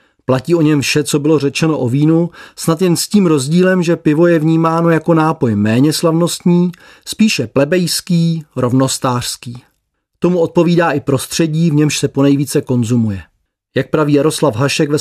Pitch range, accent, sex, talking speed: 135-170 Hz, native, male, 155 wpm